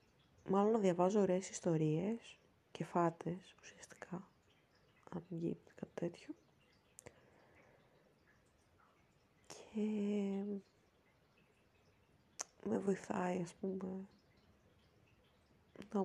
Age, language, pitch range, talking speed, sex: 20-39, Greek, 165-190 Hz, 55 wpm, female